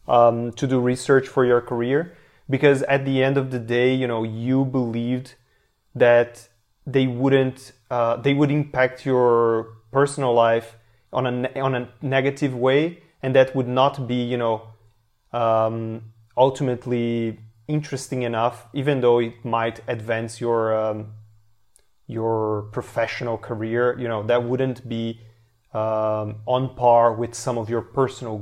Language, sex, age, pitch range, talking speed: English, male, 30-49, 115-130 Hz, 145 wpm